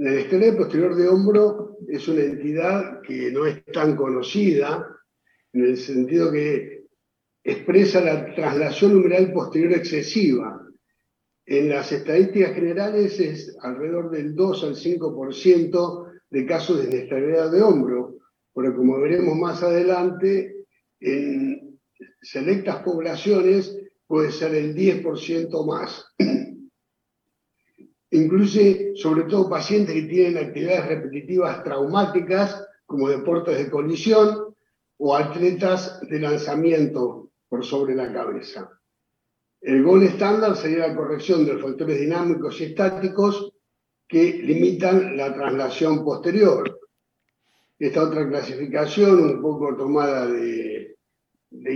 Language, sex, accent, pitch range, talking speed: Spanish, male, Argentinian, 145-195 Hz, 115 wpm